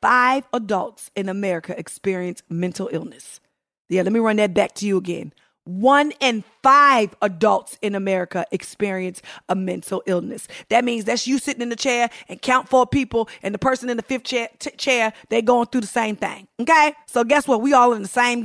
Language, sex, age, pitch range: English, female, 40-59, 195-290 Hz